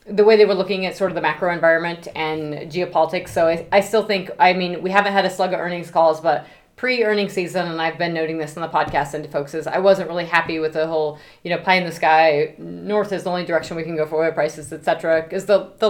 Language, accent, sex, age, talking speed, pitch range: English, American, female, 30-49, 270 wpm, 160-195 Hz